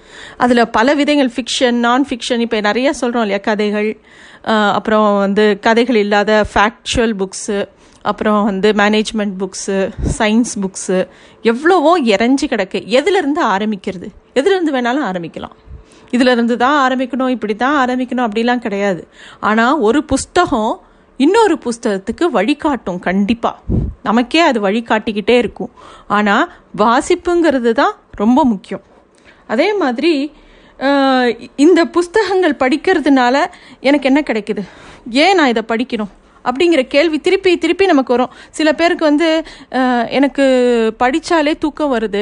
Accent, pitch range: native, 215-290 Hz